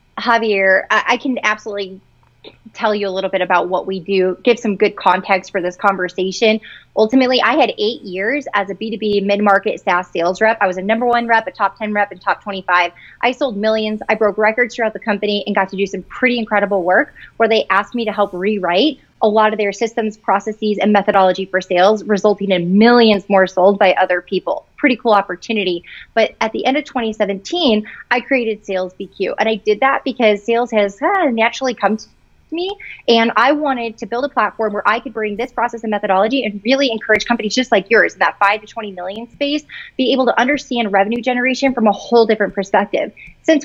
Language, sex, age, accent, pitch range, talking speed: English, female, 20-39, American, 200-245 Hz, 210 wpm